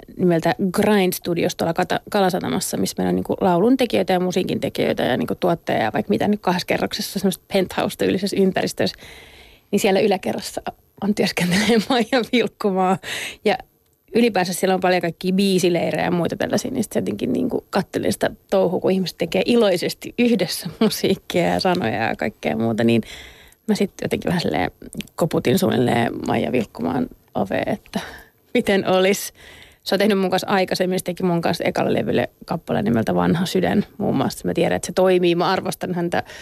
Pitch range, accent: 180-205 Hz, native